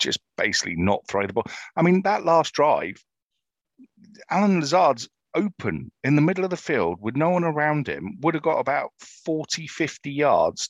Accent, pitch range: British, 105-150 Hz